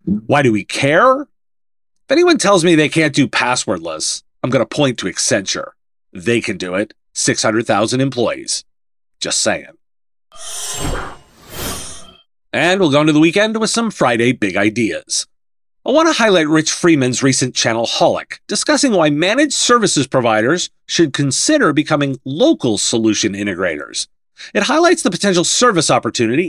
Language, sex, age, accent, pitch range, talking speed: English, male, 40-59, American, 125-200 Hz, 145 wpm